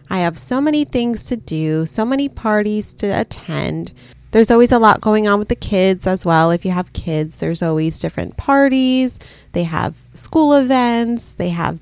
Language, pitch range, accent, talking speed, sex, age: English, 180-245 Hz, American, 190 wpm, female, 20-39